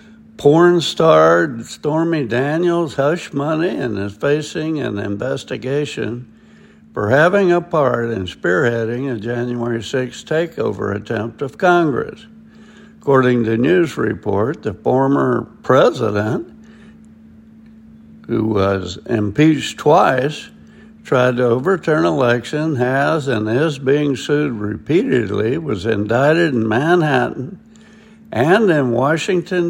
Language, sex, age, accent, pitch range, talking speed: English, male, 60-79, American, 120-195 Hz, 105 wpm